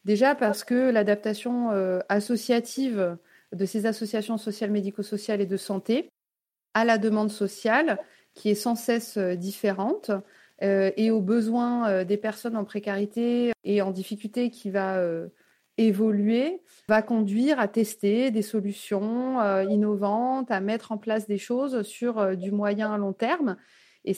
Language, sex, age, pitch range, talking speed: French, female, 30-49, 200-240 Hz, 135 wpm